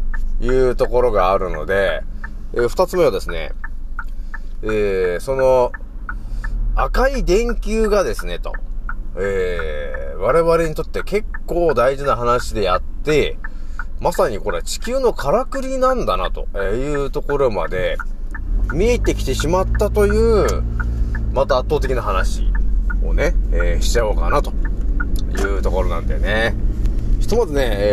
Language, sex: Japanese, male